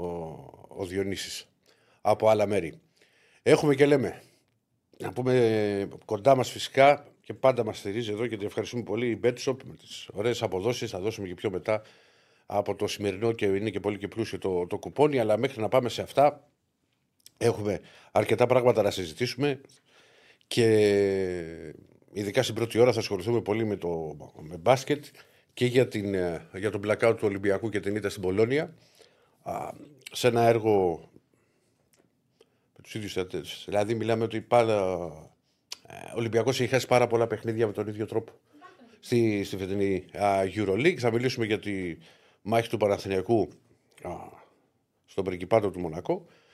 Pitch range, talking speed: 100-120 Hz, 150 wpm